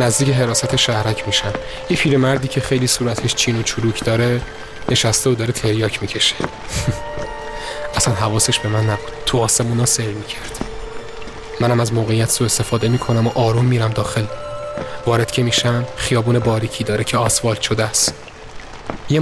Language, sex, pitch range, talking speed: Persian, male, 110-130 Hz, 155 wpm